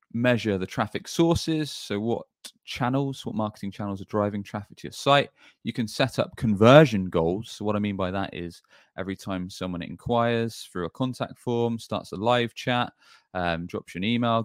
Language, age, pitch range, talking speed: English, 20-39, 90-115 Hz, 190 wpm